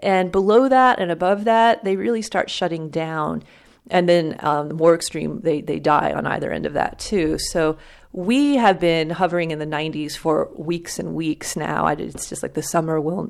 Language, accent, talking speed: English, American, 210 wpm